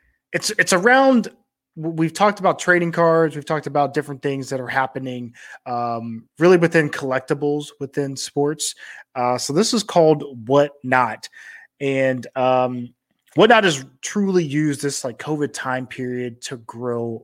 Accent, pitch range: American, 125-160 Hz